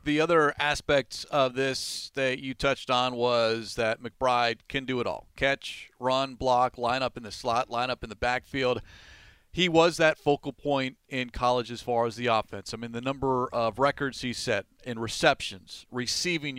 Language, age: English, 40-59